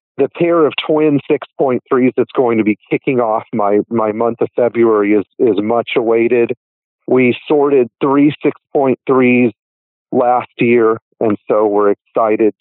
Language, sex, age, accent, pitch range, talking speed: English, male, 40-59, American, 110-135 Hz, 145 wpm